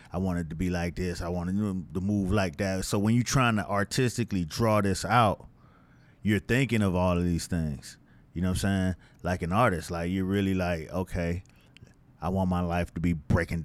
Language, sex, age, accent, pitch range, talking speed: English, male, 30-49, American, 90-115 Hz, 215 wpm